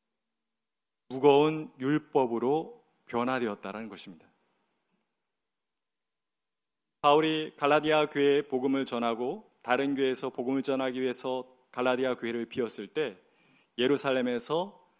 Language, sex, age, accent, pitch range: Korean, male, 30-49, native, 125-150 Hz